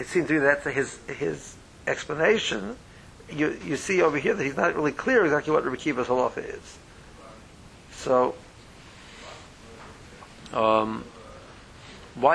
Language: English